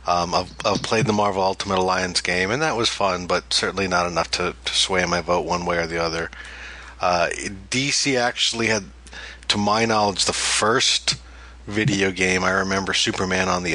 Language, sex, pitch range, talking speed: English, male, 90-105 Hz, 190 wpm